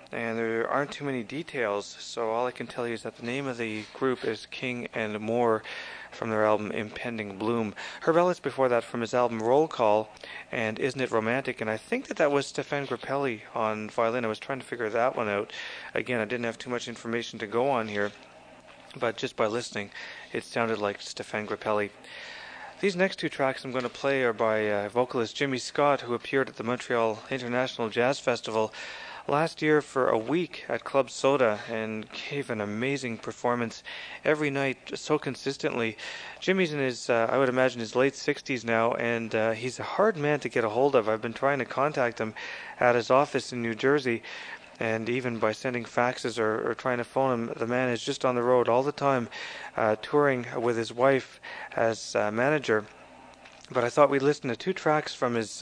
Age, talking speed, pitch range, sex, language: 30-49, 205 wpm, 115-135 Hz, male, English